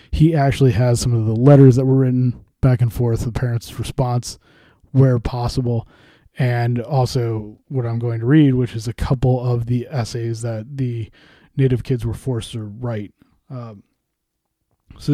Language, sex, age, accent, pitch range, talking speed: English, male, 20-39, American, 115-135 Hz, 165 wpm